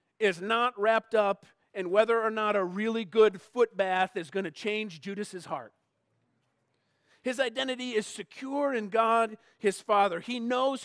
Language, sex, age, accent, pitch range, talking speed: English, male, 40-59, American, 170-225 Hz, 160 wpm